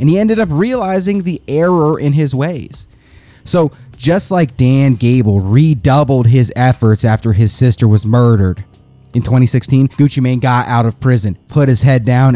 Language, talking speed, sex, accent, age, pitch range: English, 170 wpm, male, American, 30-49, 110-135 Hz